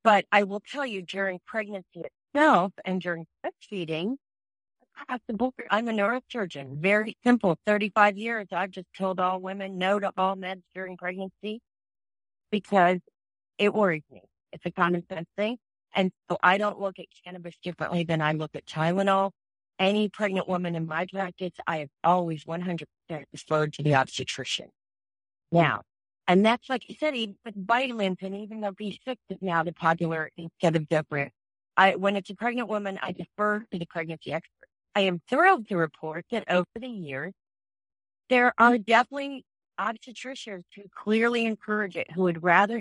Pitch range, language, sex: 165-210 Hz, English, female